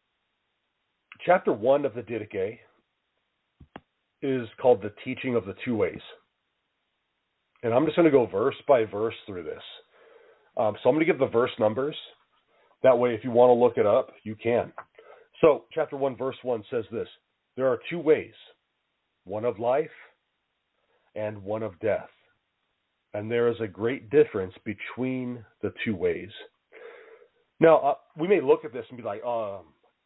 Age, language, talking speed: 40-59, English, 165 wpm